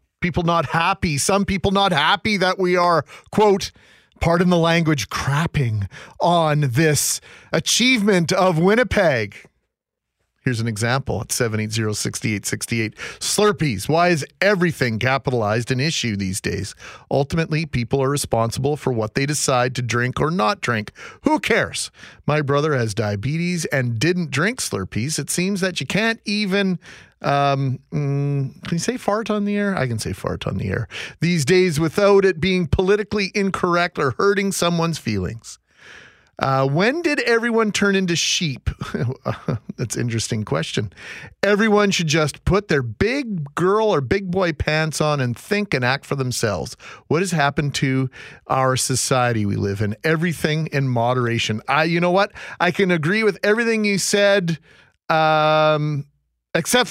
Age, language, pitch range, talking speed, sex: 40-59, English, 130-190 Hz, 150 wpm, male